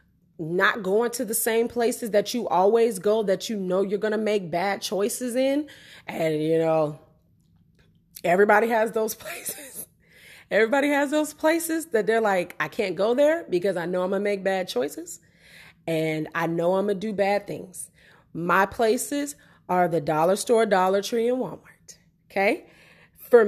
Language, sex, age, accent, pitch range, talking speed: English, female, 30-49, American, 190-250 Hz, 175 wpm